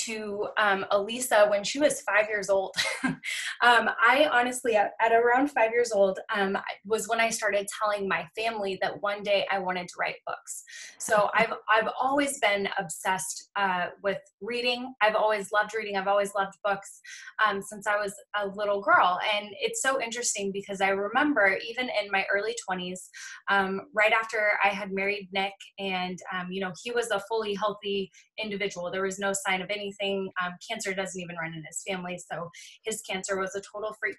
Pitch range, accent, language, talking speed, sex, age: 195-240 Hz, American, English, 190 wpm, female, 20-39